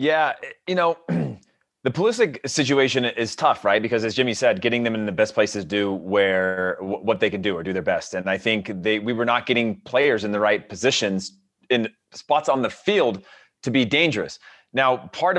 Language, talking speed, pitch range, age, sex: English, 205 wpm, 110-145 Hz, 30-49, male